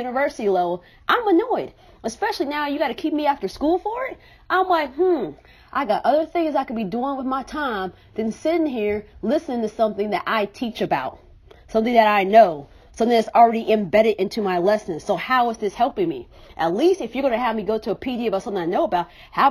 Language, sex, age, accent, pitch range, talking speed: English, female, 30-49, American, 200-280 Hz, 230 wpm